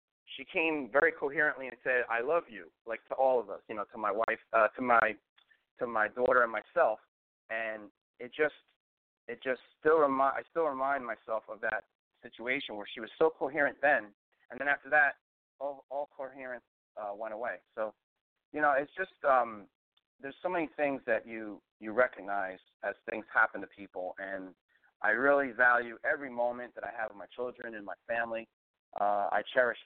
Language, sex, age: English, male, 30-49